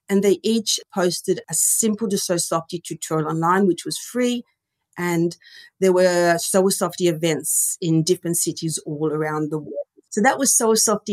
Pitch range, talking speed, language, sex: 175-215 Hz, 175 wpm, English, female